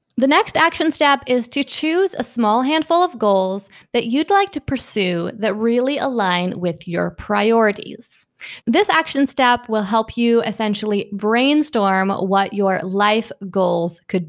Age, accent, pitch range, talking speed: 20-39, American, 205-270 Hz, 150 wpm